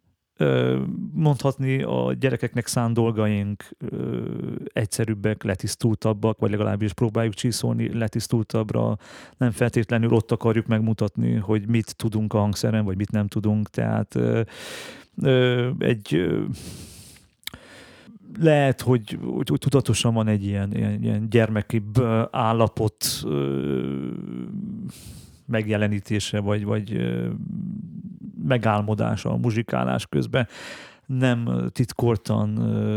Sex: male